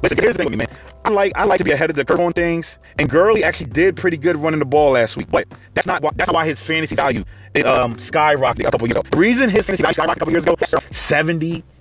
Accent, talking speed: American, 310 wpm